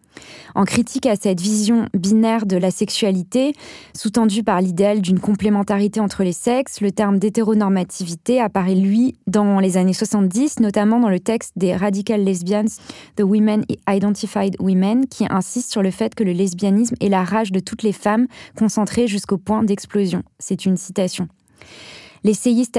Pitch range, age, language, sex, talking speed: 190-225 Hz, 20-39, French, female, 160 wpm